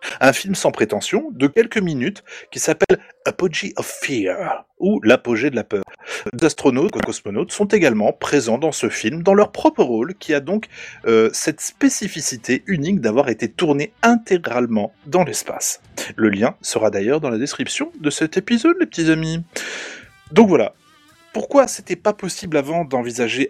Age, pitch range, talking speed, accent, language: 30-49, 130-210 Hz, 170 wpm, French, French